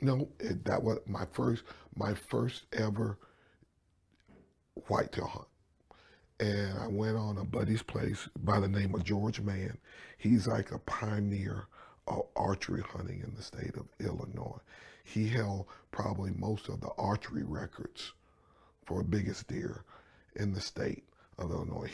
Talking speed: 140 wpm